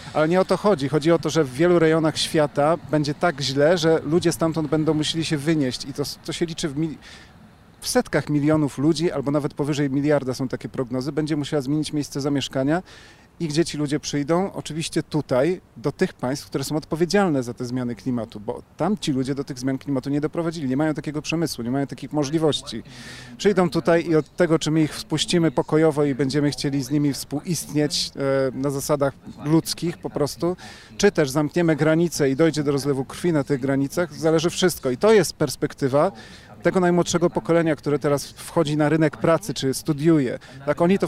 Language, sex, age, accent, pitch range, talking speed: Polish, male, 40-59, native, 140-165 Hz, 195 wpm